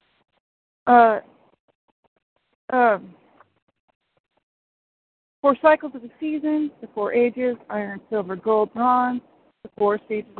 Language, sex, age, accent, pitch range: English, female, 40-59, American, 220-280 Hz